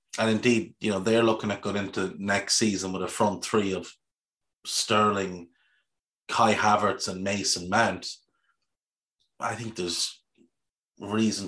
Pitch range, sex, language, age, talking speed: 95-115 Hz, male, English, 30-49, 135 wpm